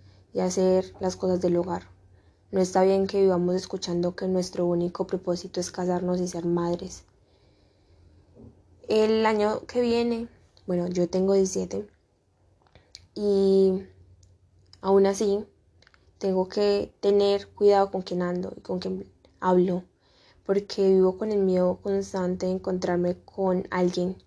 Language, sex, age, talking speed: Spanish, female, 10-29, 130 wpm